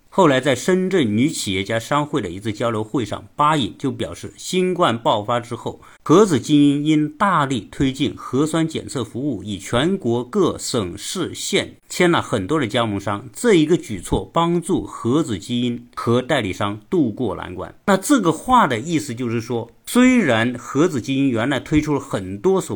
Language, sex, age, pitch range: Chinese, male, 50-69, 115-175 Hz